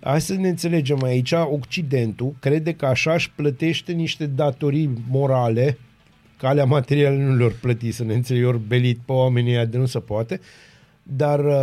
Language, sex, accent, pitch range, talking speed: Romanian, male, native, 130-155 Hz, 160 wpm